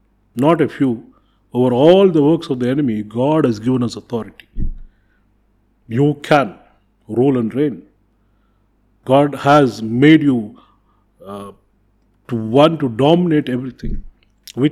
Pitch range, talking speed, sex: 115-155 Hz, 125 wpm, male